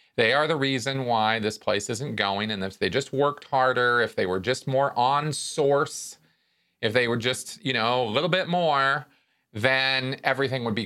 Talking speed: 200 wpm